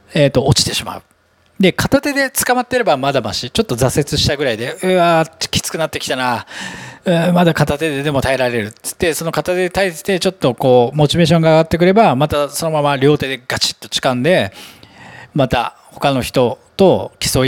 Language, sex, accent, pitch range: Japanese, male, native, 125-195 Hz